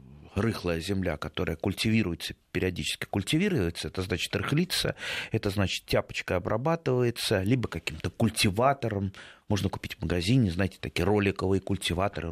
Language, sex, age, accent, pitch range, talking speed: Russian, male, 30-49, native, 100-135 Hz, 115 wpm